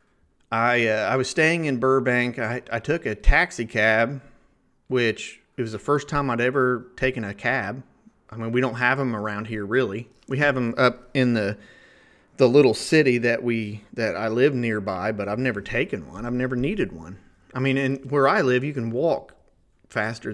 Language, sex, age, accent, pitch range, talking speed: English, male, 30-49, American, 110-135 Hz, 200 wpm